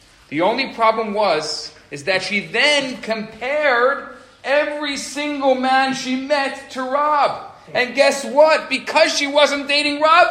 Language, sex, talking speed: English, male, 140 wpm